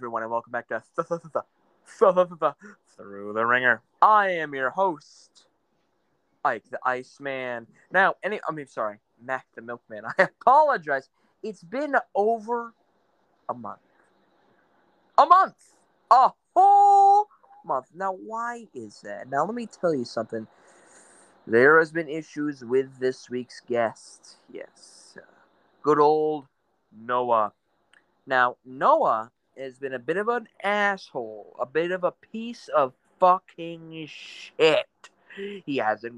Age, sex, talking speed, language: 20-39, male, 140 wpm, English